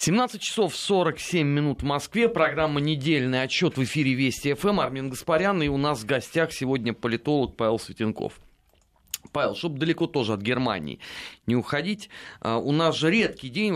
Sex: male